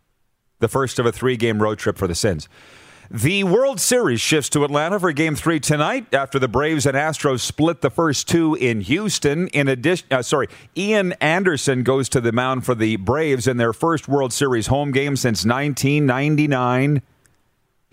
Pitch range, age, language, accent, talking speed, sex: 120-150 Hz, 40-59, English, American, 180 wpm, male